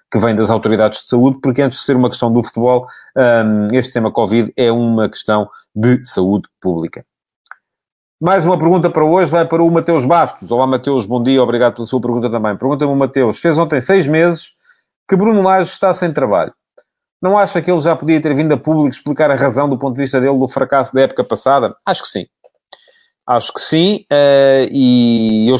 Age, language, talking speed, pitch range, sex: 40-59, English, 205 wpm, 115-140 Hz, male